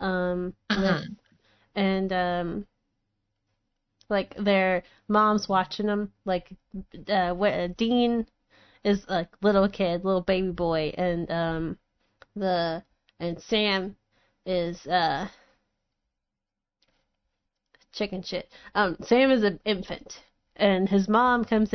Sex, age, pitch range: female, 20-39, 175-205 Hz